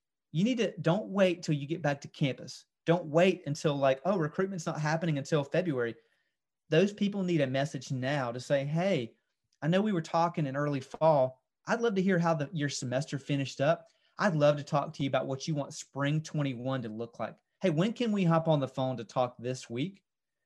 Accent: American